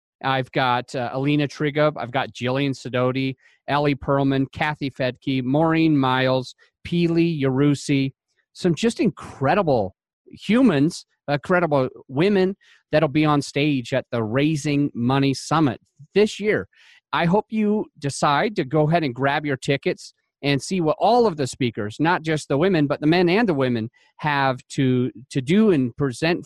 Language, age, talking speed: English, 30-49, 155 wpm